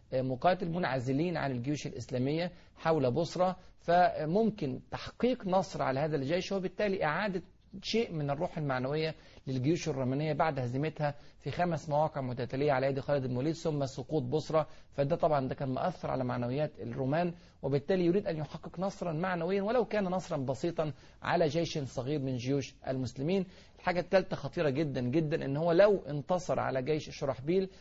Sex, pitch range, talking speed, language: male, 135-175 Hz, 150 wpm, Arabic